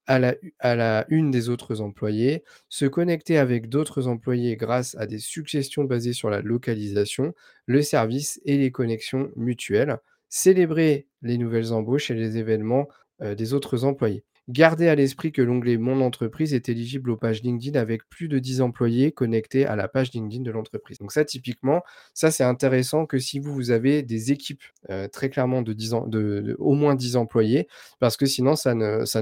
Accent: French